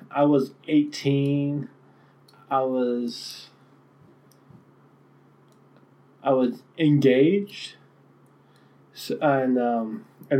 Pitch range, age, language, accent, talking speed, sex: 120-135 Hz, 20-39, English, American, 65 wpm, male